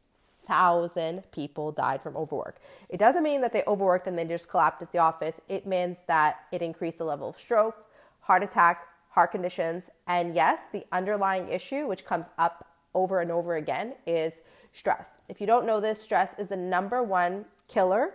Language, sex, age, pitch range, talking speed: English, female, 30-49, 175-230 Hz, 185 wpm